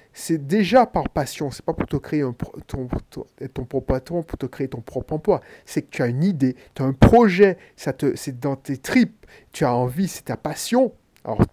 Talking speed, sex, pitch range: 220 wpm, male, 135-180 Hz